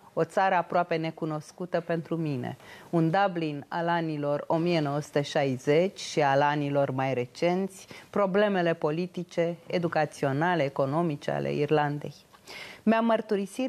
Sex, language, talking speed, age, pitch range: female, English, 105 wpm, 30-49, 155-190 Hz